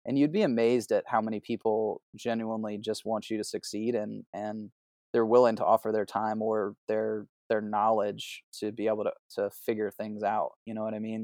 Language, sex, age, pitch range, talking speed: English, male, 20-39, 105-115 Hz, 210 wpm